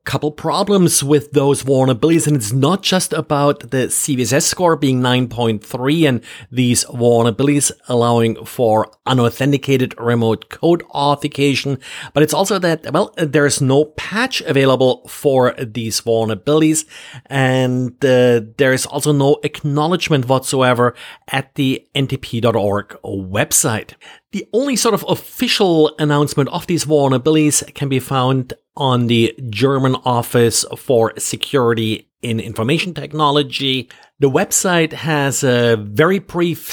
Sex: male